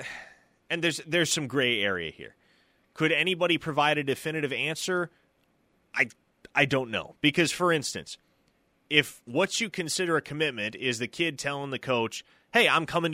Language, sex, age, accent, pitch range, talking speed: English, male, 30-49, American, 115-150 Hz, 160 wpm